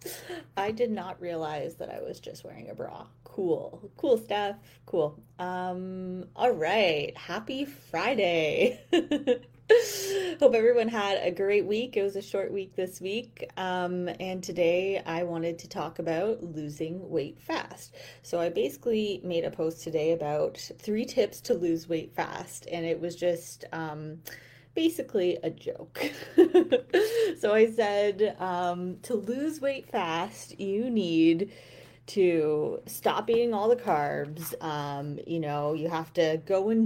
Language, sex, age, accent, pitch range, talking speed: English, female, 30-49, American, 165-225 Hz, 145 wpm